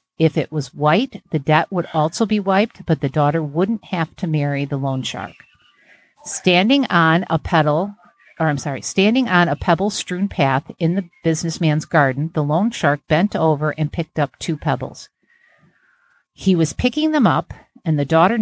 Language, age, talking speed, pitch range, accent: English, 50-69, 175 wpm, 145-185 Hz, American